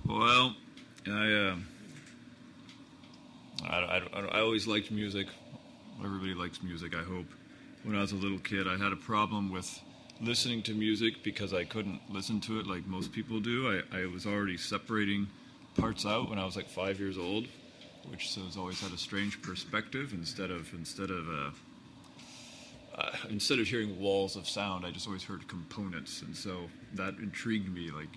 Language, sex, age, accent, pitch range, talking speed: English, male, 30-49, American, 90-105 Hz, 175 wpm